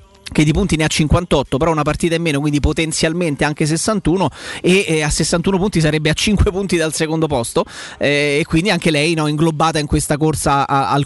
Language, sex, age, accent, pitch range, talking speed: Italian, male, 30-49, native, 150-175 Hz, 200 wpm